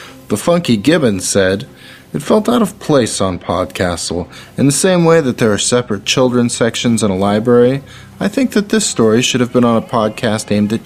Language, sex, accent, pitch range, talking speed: English, male, American, 100-140 Hz, 205 wpm